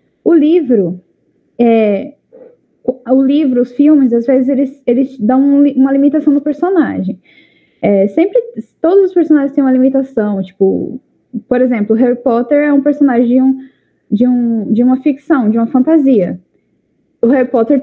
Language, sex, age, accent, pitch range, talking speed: Portuguese, female, 10-29, Brazilian, 225-295 Hz, 160 wpm